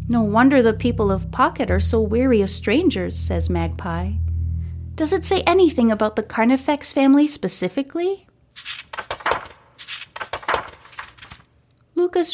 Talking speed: 110 wpm